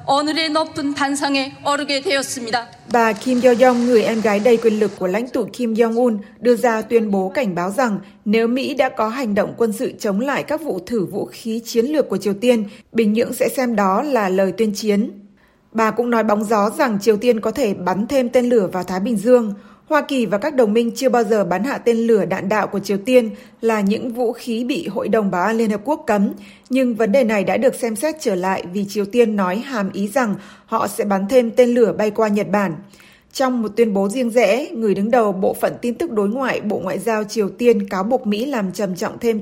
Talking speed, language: 235 wpm, Vietnamese